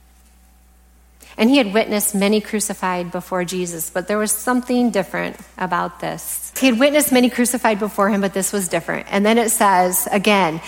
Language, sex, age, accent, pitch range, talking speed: English, female, 30-49, American, 180-225 Hz, 175 wpm